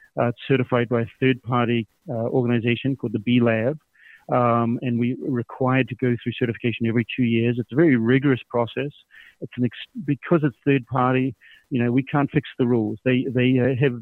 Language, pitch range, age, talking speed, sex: English, 120-135 Hz, 40-59, 195 wpm, male